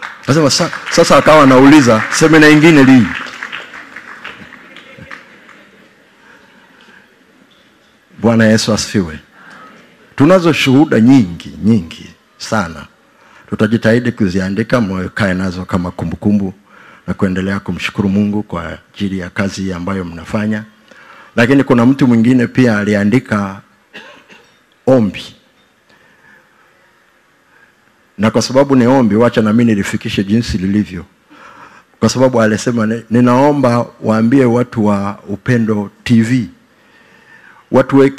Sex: male